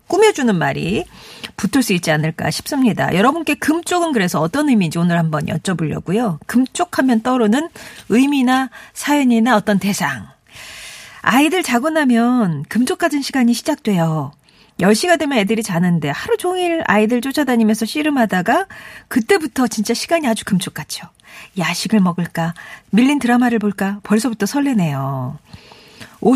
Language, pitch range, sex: Korean, 175-250 Hz, female